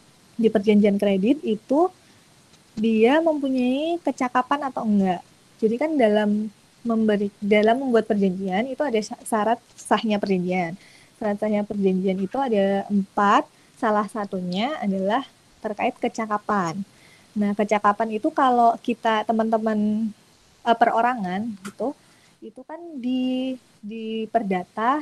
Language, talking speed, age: Indonesian, 105 wpm, 20-39